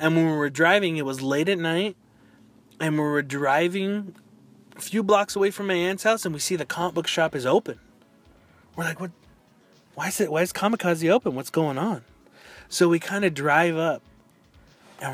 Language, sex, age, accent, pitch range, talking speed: English, male, 20-39, American, 150-205 Hz, 200 wpm